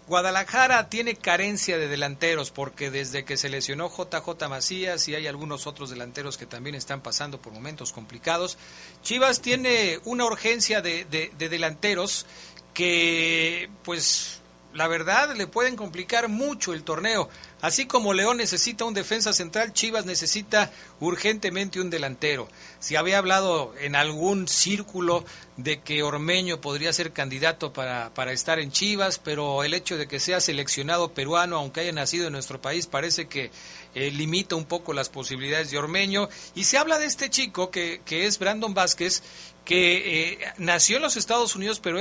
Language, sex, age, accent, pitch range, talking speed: Spanish, male, 40-59, Mexican, 150-200 Hz, 165 wpm